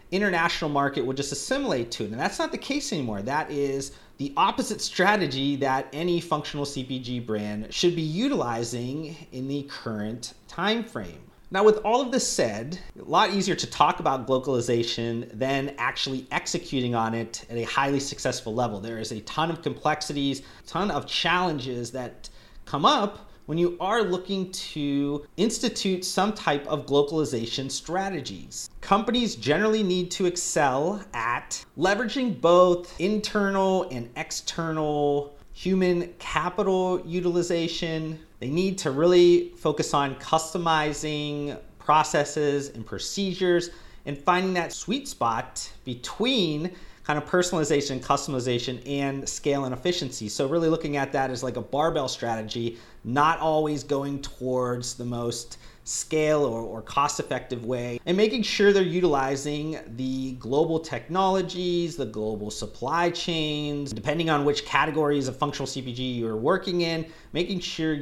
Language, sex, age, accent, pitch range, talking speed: English, male, 30-49, American, 130-180 Hz, 145 wpm